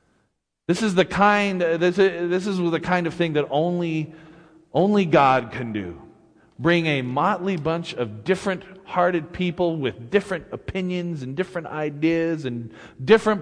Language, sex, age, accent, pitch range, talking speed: English, male, 40-59, American, 120-175 Hz, 145 wpm